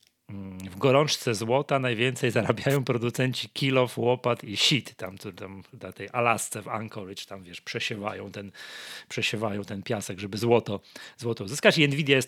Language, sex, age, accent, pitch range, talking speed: Polish, male, 30-49, native, 110-140 Hz, 150 wpm